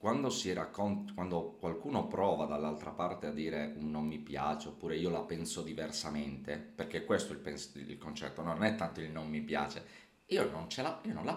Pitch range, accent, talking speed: 75-110 Hz, native, 210 wpm